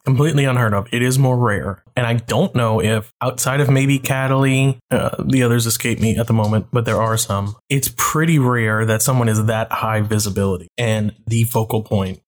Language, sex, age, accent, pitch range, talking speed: English, male, 20-39, American, 110-135 Hz, 200 wpm